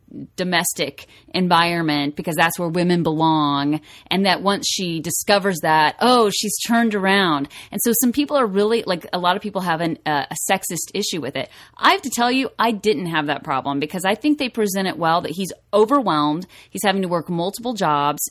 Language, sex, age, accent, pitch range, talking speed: English, female, 30-49, American, 170-255 Hz, 195 wpm